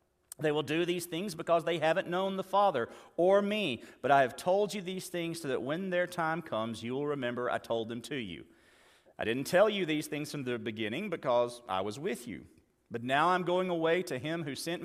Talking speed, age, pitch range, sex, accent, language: 230 wpm, 40-59, 130-180 Hz, male, American, English